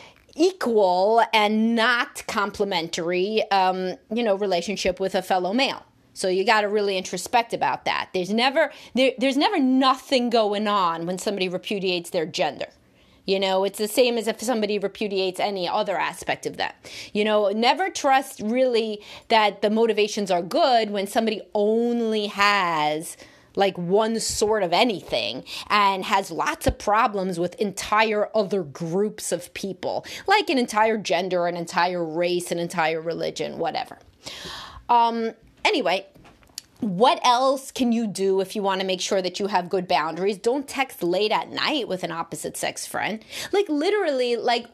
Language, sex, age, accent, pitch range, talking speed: English, female, 30-49, American, 185-245 Hz, 155 wpm